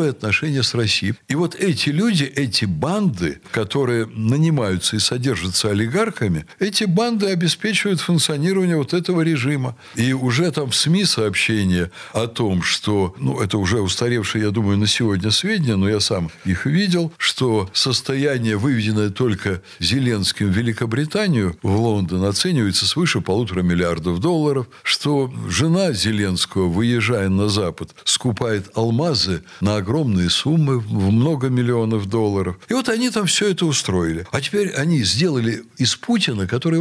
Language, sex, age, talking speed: Russian, male, 60-79, 140 wpm